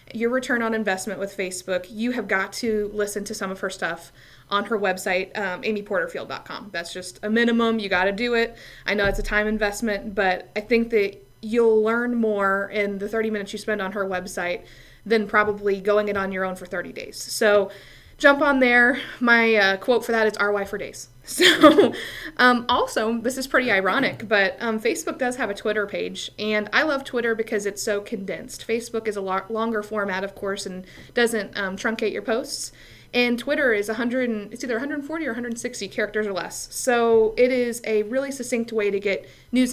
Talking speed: 200 wpm